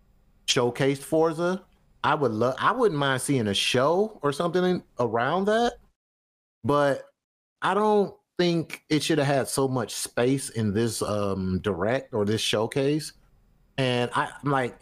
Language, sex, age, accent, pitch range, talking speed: English, male, 30-49, American, 105-145 Hz, 150 wpm